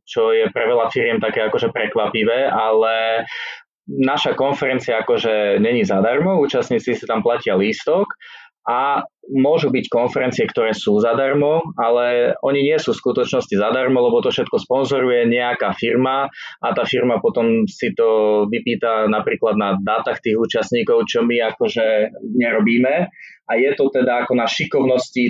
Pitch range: 110-155 Hz